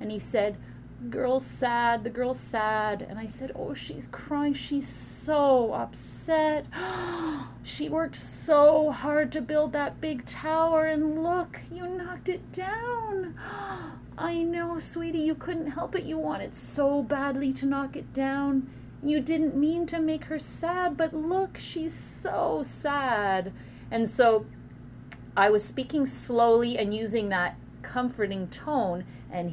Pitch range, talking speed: 200-300 Hz, 145 wpm